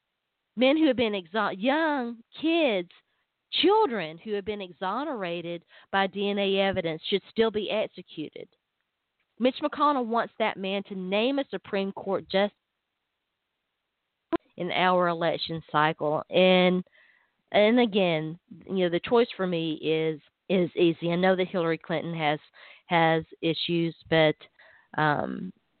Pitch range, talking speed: 170-240 Hz, 130 wpm